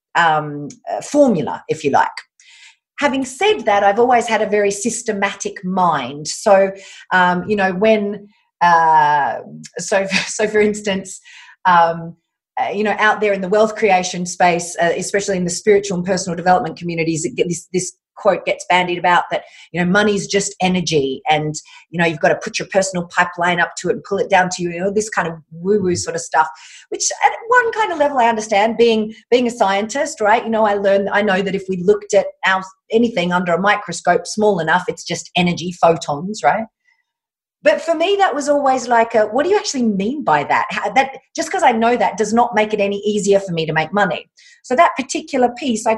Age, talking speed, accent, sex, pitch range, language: 40-59, 210 wpm, Australian, female, 180-235 Hz, English